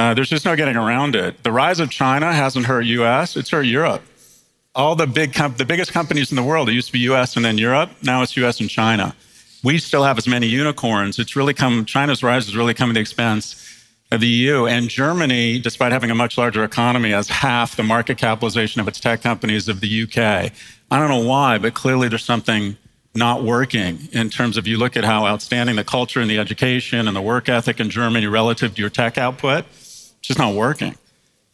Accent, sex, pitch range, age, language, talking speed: American, male, 110-130 Hz, 40-59, English, 225 wpm